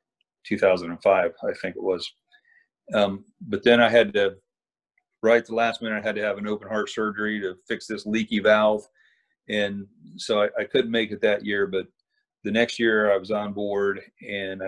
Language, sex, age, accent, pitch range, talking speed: English, male, 40-59, American, 100-130 Hz, 190 wpm